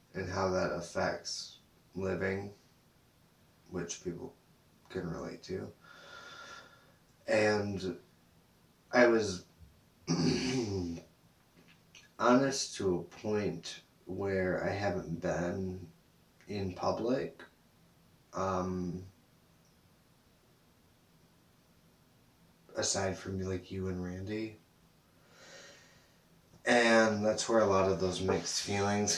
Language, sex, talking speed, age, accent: English, male, 80 wpm, 20-39, American